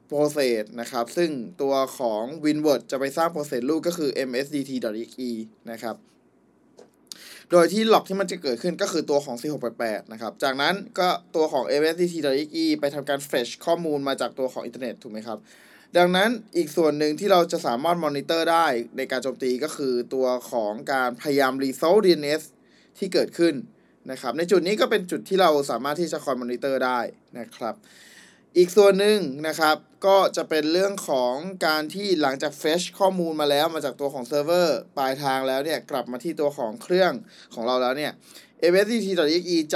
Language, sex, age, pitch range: Thai, male, 20-39, 135-170 Hz